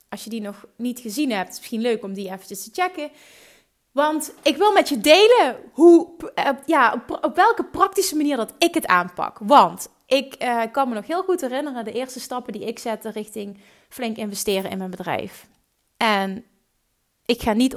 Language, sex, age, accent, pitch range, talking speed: Dutch, female, 30-49, Dutch, 205-265 Hz, 190 wpm